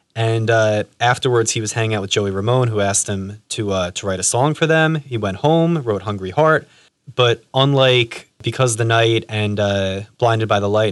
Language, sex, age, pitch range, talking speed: English, male, 20-39, 105-125 Hz, 215 wpm